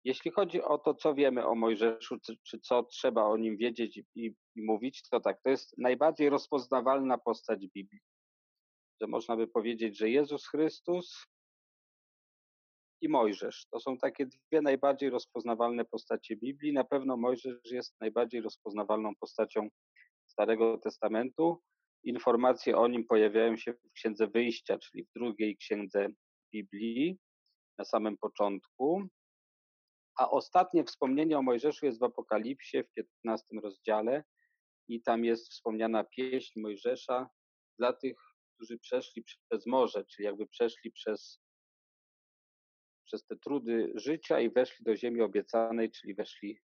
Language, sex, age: Polish, male, 40-59